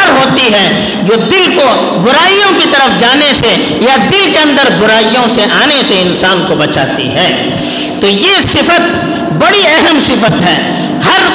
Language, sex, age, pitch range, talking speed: Urdu, female, 50-69, 235-335 Hz, 155 wpm